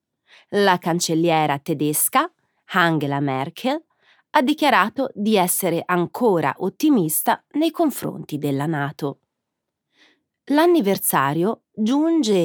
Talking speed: 80 wpm